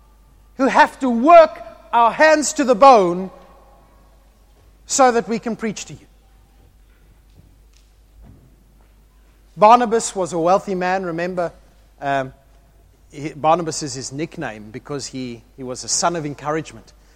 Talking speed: 125 wpm